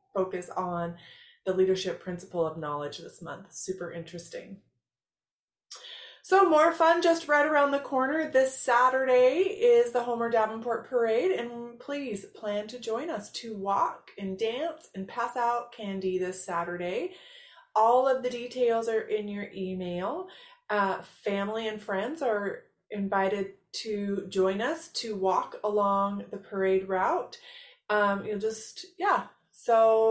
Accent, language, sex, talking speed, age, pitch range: American, English, female, 140 wpm, 30-49, 205-315 Hz